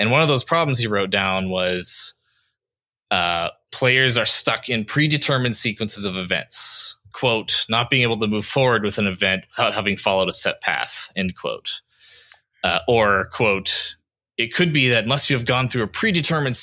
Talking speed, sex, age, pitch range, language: 180 wpm, male, 20-39, 100-130 Hz, English